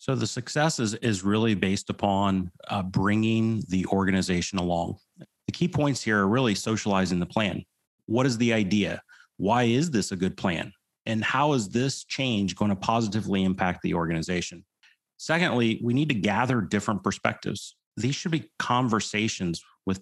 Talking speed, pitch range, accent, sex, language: 160 wpm, 95-115 Hz, American, male, English